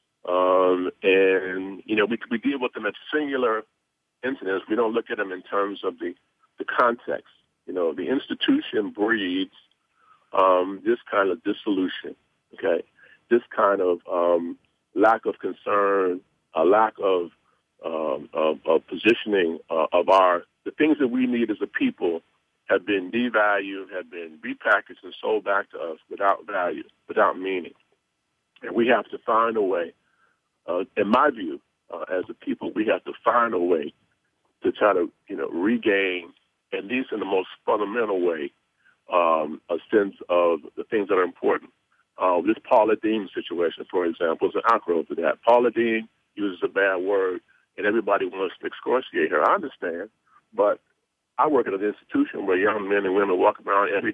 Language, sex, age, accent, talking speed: English, male, 50-69, American, 175 wpm